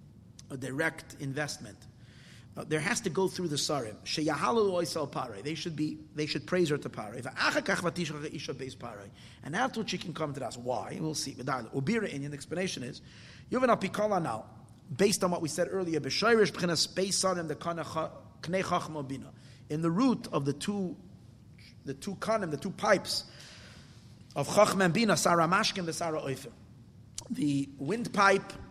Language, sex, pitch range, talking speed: English, male, 135-185 Hz, 125 wpm